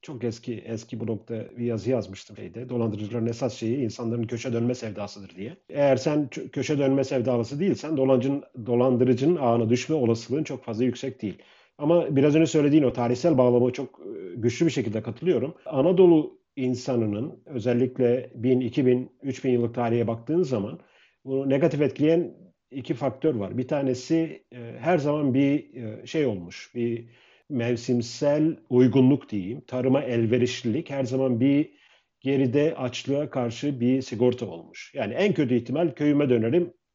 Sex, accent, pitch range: male, native, 120-140 Hz